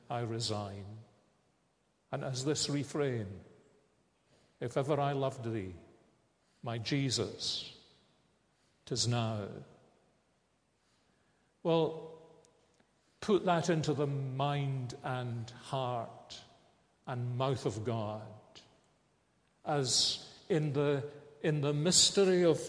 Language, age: English, 50-69